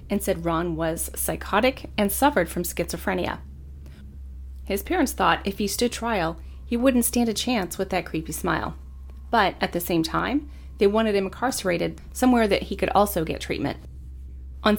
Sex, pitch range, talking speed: female, 140-205 Hz, 170 wpm